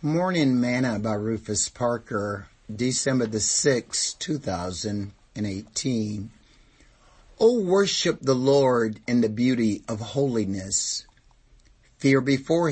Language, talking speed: English, 110 wpm